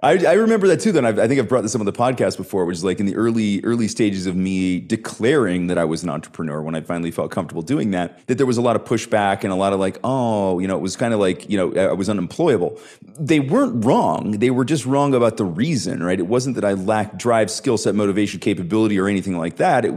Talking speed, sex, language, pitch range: 270 wpm, male, English, 95-120 Hz